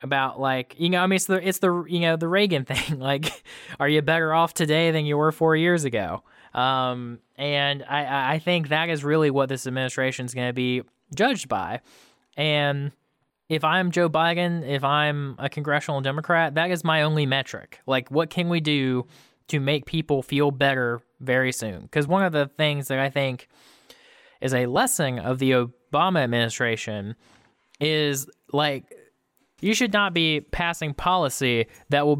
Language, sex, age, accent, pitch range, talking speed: English, male, 20-39, American, 125-160 Hz, 175 wpm